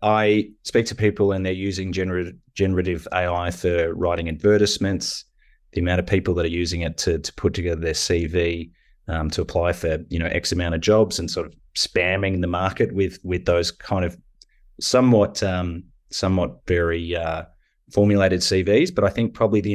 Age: 30-49